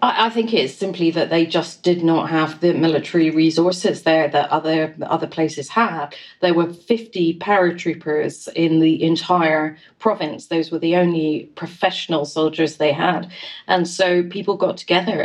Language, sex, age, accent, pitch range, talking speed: English, female, 40-59, British, 160-180 Hz, 155 wpm